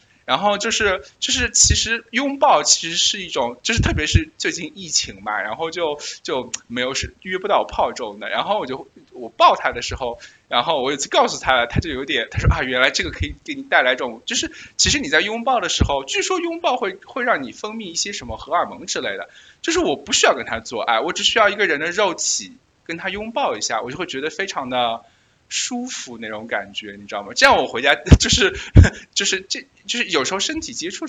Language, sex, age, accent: Chinese, male, 20-39, native